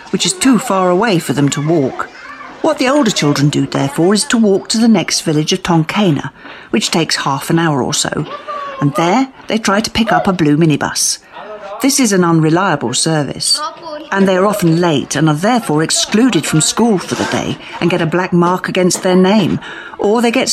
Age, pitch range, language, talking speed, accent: 50-69, 160-235 Hz, English, 210 wpm, British